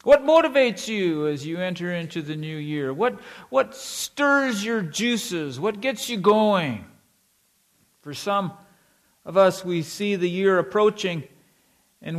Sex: male